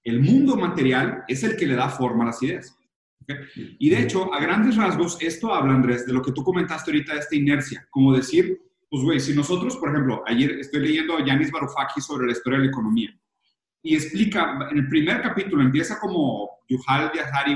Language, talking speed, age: Spanish, 210 wpm, 40-59